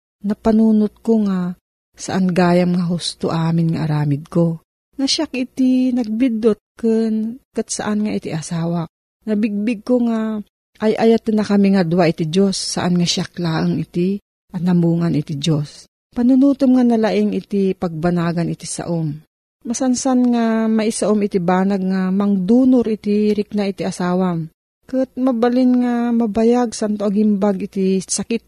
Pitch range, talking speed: 175-230 Hz, 140 wpm